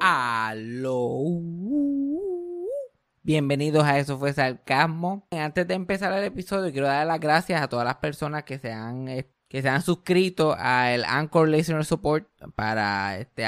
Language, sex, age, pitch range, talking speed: Spanish, male, 20-39, 125-160 Hz, 145 wpm